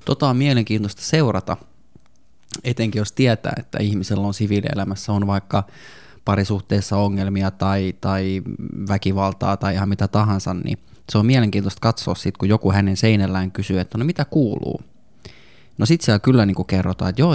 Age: 20-39